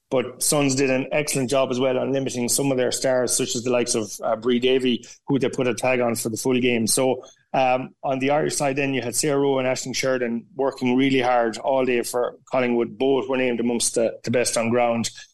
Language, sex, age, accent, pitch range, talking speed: English, male, 30-49, Irish, 120-135 Hz, 245 wpm